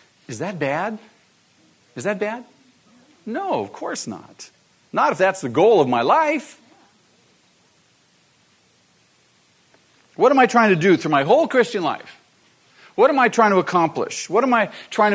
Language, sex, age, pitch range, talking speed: English, male, 50-69, 185-250 Hz, 155 wpm